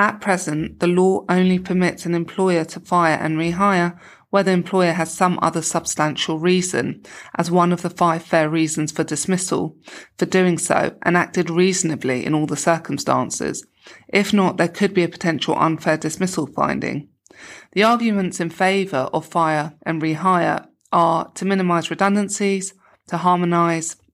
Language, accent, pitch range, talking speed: English, British, 160-185 Hz, 155 wpm